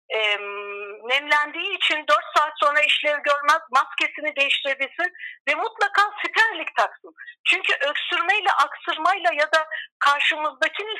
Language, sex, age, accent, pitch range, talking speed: Turkish, female, 50-69, native, 265-340 Hz, 105 wpm